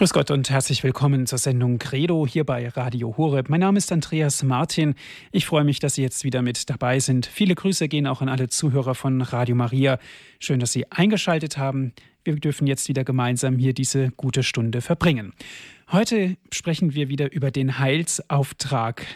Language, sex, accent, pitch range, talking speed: German, male, German, 130-155 Hz, 185 wpm